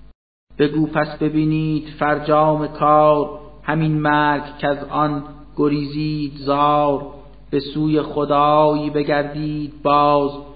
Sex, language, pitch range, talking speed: male, Persian, 145-150 Hz, 95 wpm